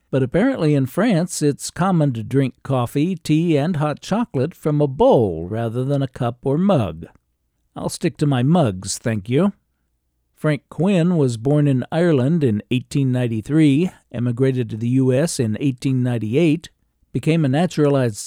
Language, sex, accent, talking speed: English, male, American, 150 wpm